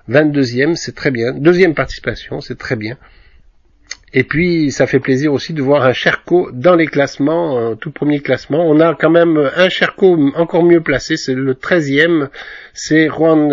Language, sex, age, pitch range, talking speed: French, male, 50-69, 135-175 Hz, 175 wpm